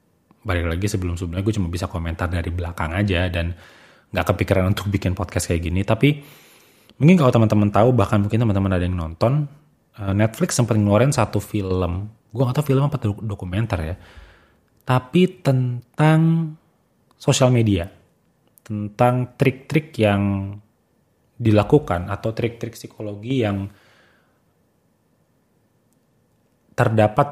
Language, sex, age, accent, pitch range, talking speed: Indonesian, male, 30-49, native, 95-120 Hz, 120 wpm